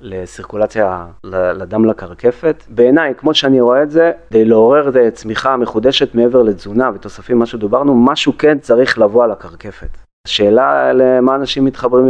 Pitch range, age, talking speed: 100-130 Hz, 30-49, 135 wpm